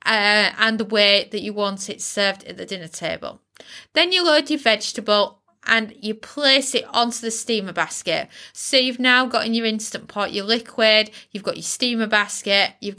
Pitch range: 205-255 Hz